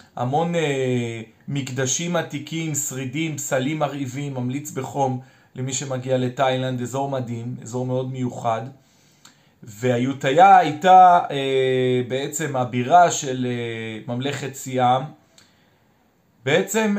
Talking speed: 95 wpm